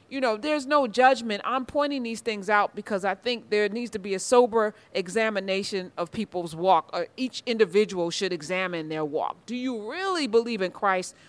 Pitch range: 190-240 Hz